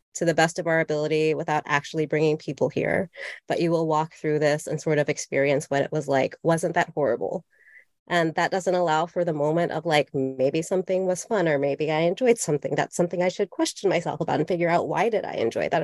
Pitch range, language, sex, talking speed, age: 160-190 Hz, English, female, 230 wpm, 30-49